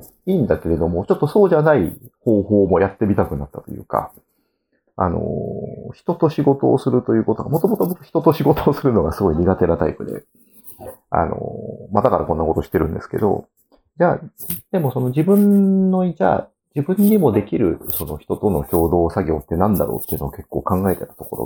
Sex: male